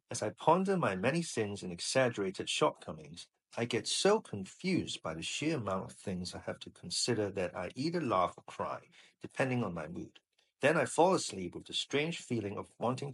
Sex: male